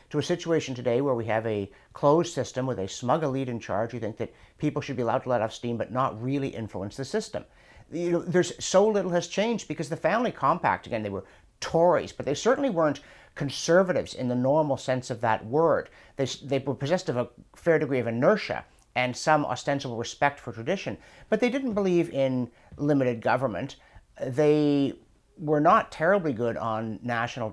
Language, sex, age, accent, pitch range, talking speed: English, male, 50-69, American, 125-170 Hz, 195 wpm